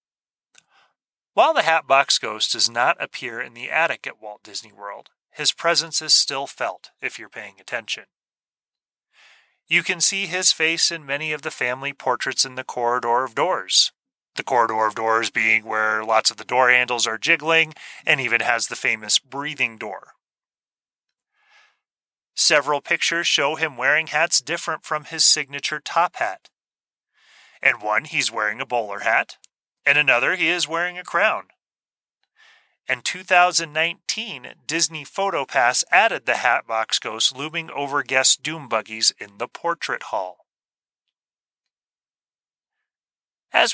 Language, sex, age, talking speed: English, male, 30-49, 140 wpm